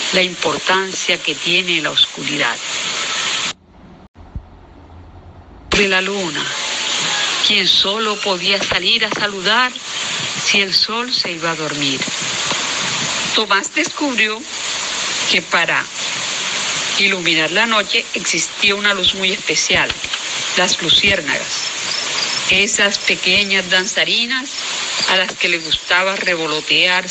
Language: Spanish